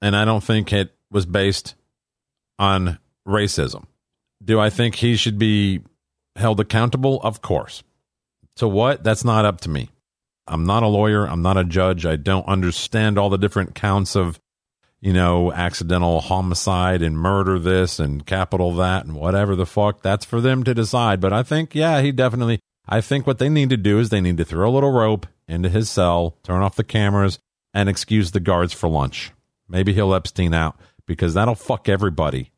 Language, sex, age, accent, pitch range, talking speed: English, male, 50-69, American, 90-120 Hz, 190 wpm